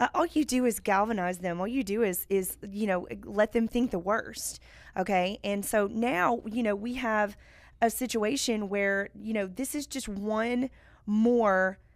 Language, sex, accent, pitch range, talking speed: English, female, American, 195-235 Hz, 185 wpm